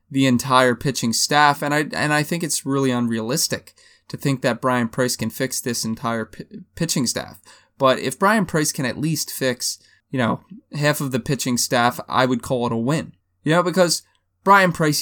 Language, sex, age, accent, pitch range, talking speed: English, male, 20-39, American, 125-160 Hz, 200 wpm